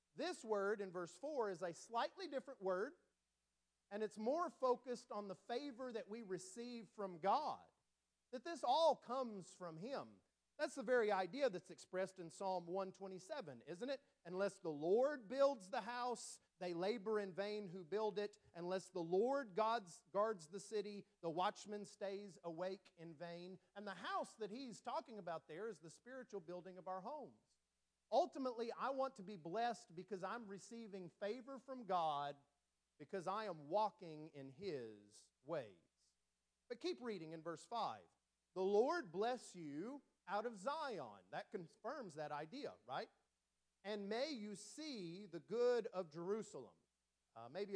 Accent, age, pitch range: American, 40-59, 170-230 Hz